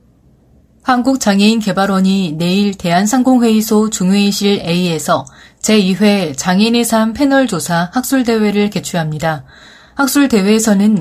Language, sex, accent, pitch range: Korean, female, native, 180-225 Hz